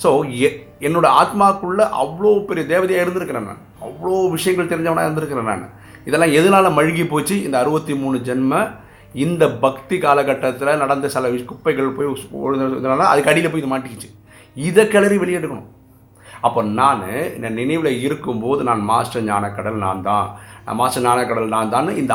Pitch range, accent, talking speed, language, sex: 110-155 Hz, native, 145 wpm, Tamil, male